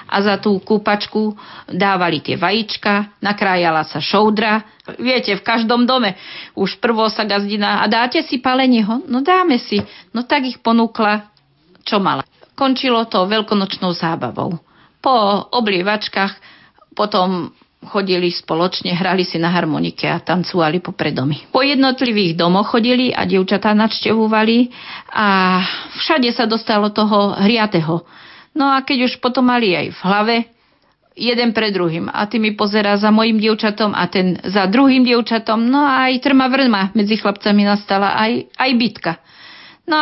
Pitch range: 195-235 Hz